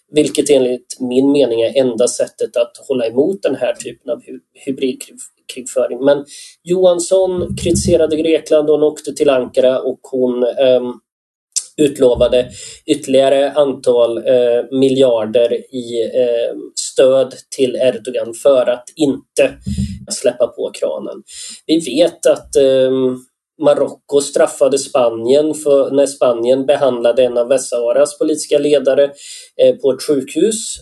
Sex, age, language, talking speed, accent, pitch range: male, 30-49, Swedish, 125 wpm, native, 135-160 Hz